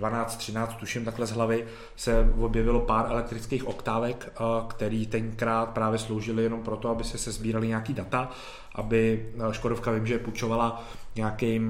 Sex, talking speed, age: male, 150 wpm, 30-49